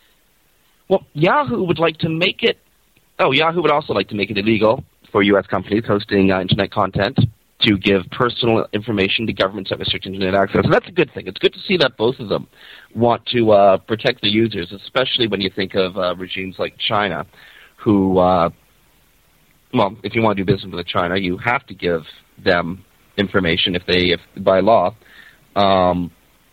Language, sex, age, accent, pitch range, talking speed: English, male, 30-49, American, 95-120 Hz, 190 wpm